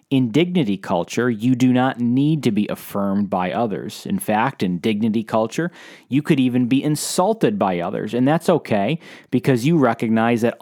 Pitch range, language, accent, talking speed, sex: 105-140 Hz, English, American, 175 wpm, male